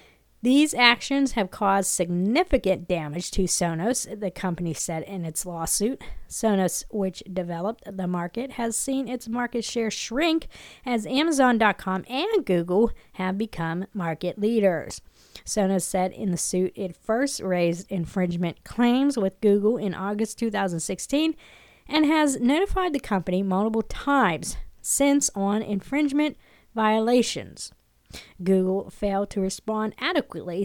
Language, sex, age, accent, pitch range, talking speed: English, female, 40-59, American, 190-250 Hz, 125 wpm